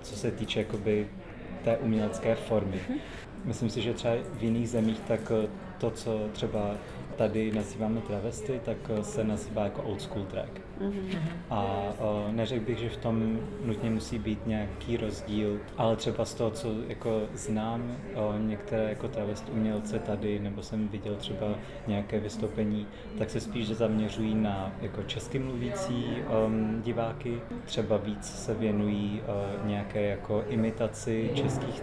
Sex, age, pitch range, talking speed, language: male, 20-39, 105-115 Hz, 130 wpm, Czech